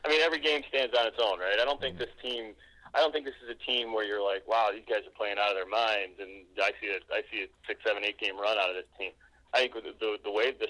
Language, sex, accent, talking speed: English, male, American, 325 wpm